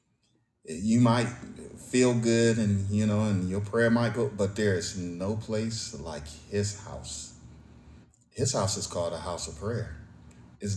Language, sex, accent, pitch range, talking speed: English, male, American, 90-110 Hz, 160 wpm